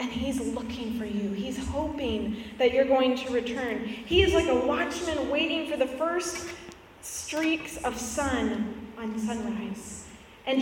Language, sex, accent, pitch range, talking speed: English, female, American, 255-345 Hz, 155 wpm